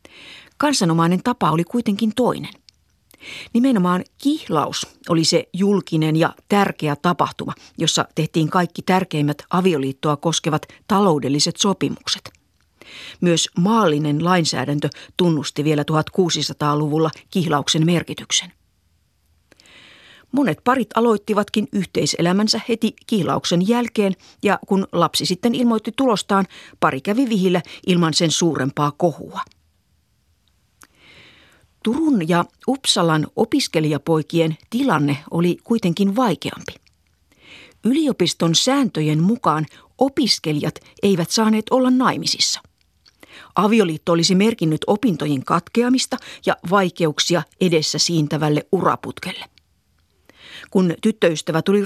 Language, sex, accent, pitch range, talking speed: Finnish, female, native, 155-210 Hz, 90 wpm